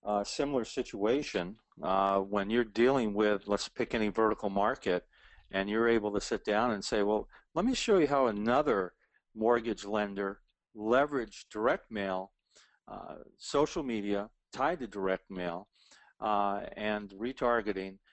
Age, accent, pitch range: 50-69, American, 95-110 Hz